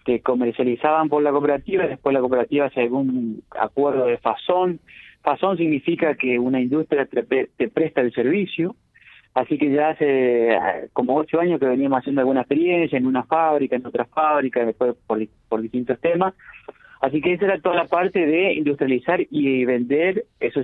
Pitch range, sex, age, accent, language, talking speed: 120-155 Hz, male, 40-59, Argentinian, Spanish, 165 wpm